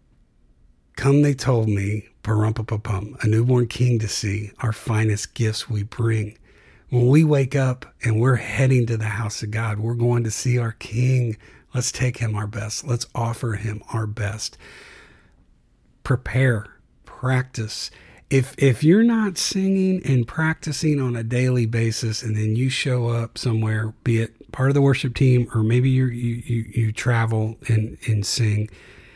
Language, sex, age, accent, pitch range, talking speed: English, male, 50-69, American, 110-135 Hz, 165 wpm